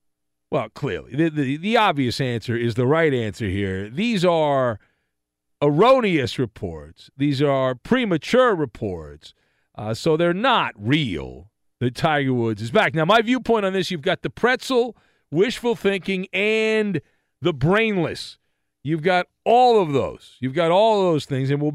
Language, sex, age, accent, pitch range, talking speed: English, male, 50-69, American, 125-200 Hz, 155 wpm